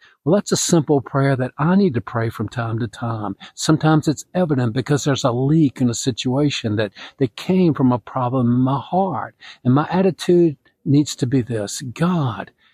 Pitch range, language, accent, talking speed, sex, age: 115-155 Hz, English, American, 195 wpm, male, 50-69